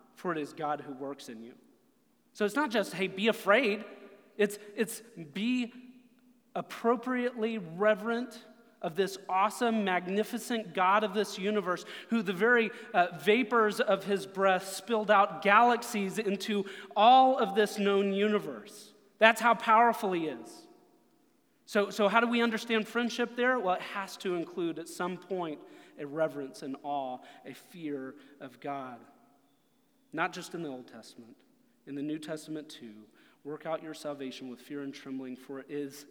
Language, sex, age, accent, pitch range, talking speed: English, male, 30-49, American, 155-220 Hz, 160 wpm